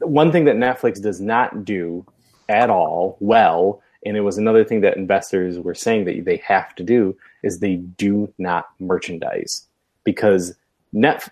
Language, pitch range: English, 95-140 Hz